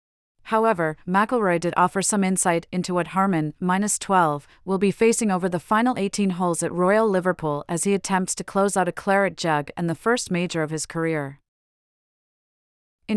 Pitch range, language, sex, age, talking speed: 160-205 Hz, English, female, 30-49, 175 wpm